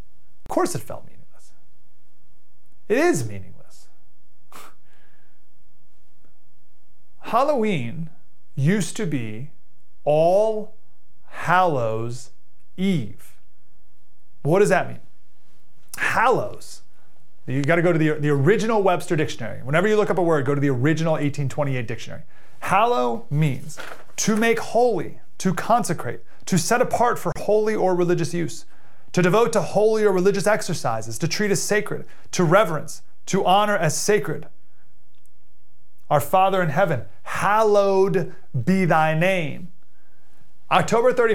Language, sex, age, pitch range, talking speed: English, male, 30-49, 145-190 Hz, 120 wpm